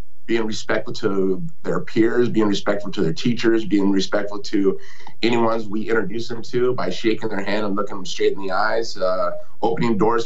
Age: 30-49